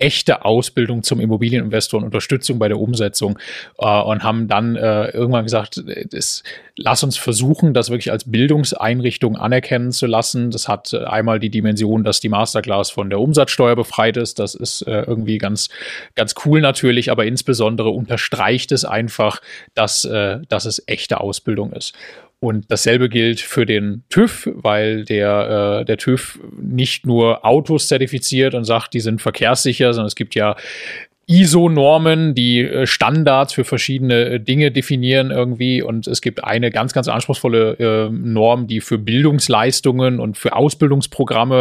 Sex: male